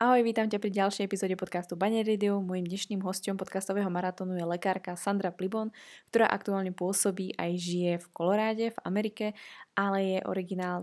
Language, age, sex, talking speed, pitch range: Slovak, 20-39, female, 160 wpm, 180-205 Hz